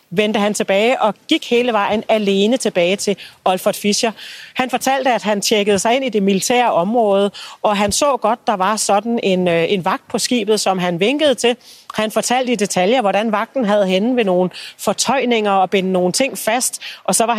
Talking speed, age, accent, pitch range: 200 wpm, 40-59, native, 195-240 Hz